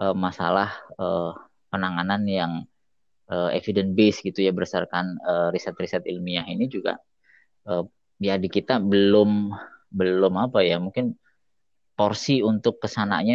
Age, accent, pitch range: 20-39, native, 90-105 Hz